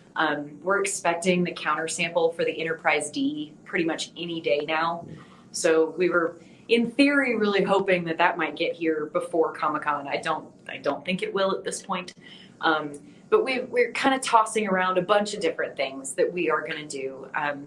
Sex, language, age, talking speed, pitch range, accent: female, English, 30-49, 195 wpm, 160-200 Hz, American